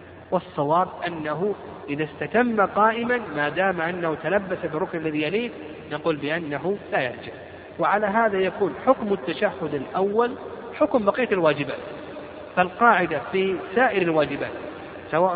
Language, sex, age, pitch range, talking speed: Arabic, male, 50-69, 145-185 Hz, 115 wpm